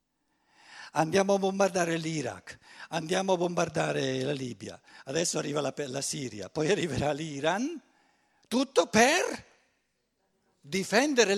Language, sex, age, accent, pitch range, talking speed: Italian, male, 60-79, native, 130-185 Hz, 105 wpm